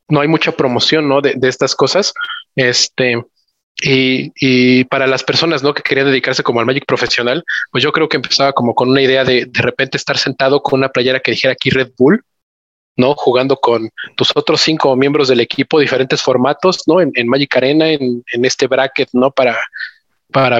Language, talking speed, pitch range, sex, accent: Spanish, 200 wpm, 130-155 Hz, male, Mexican